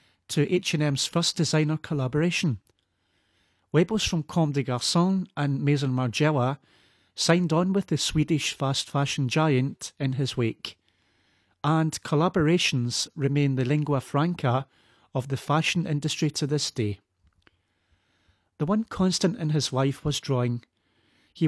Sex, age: male, 30-49